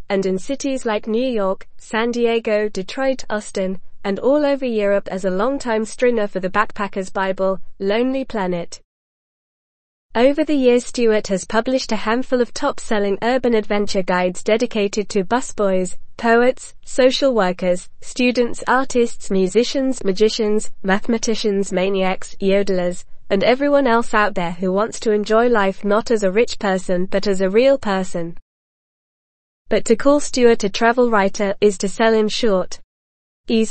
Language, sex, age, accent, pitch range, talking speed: English, female, 20-39, British, 195-235 Hz, 150 wpm